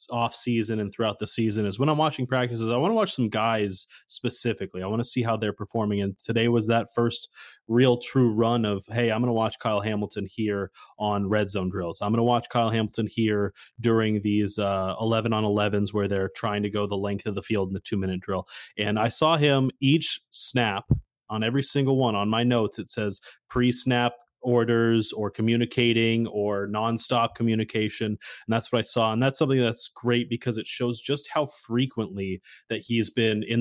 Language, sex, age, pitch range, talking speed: English, male, 20-39, 105-120 Hz, 205 wpm